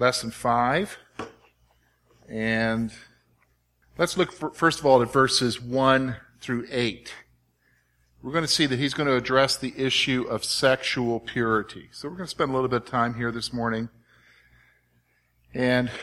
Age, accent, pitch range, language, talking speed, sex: 50-69, American, 110-140 Hz, English, 155 wpm, male